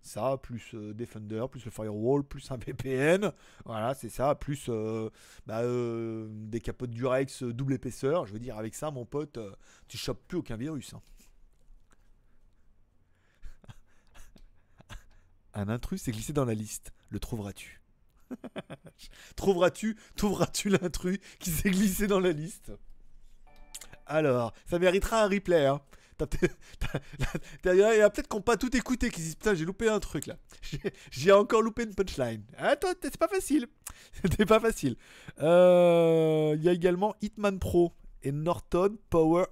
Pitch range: 115-185 Hz